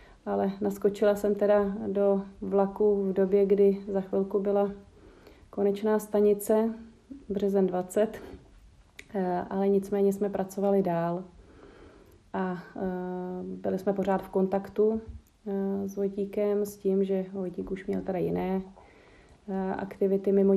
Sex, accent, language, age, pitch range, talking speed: female, native, Czech, 30-49, 185-195 Hz, 115 wpm